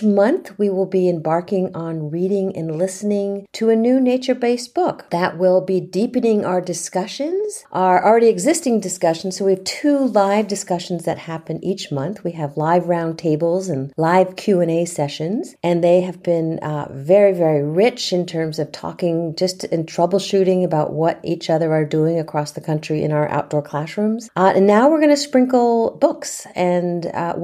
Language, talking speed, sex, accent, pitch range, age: English, 180 wpm, female, American, 160-200 Hz, 50-69